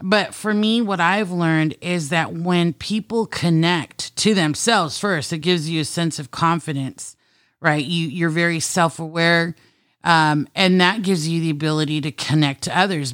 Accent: American